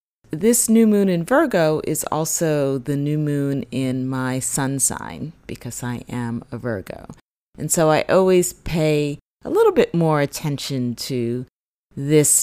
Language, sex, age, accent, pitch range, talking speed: English, female, 30-49, American, 135-175 Hz, 150 wpm